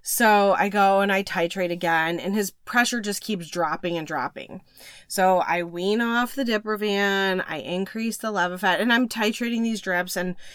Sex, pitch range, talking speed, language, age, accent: female, 175-210 Hz, 175 wpm, English, 20-39, American